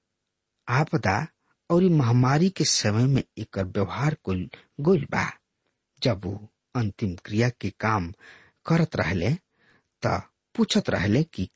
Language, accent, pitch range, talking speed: English, Indian, 100-165 Hz, 115 wpm